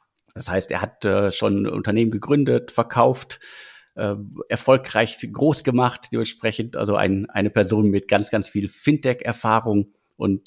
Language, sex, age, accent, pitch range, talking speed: German, male, 50-69, German, 105-125 Hz, 145 wpm